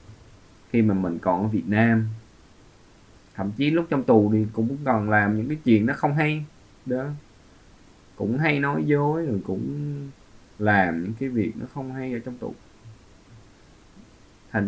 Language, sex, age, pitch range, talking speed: Vietnamese, male, 20-39, 95-120 Hz, 165 wpm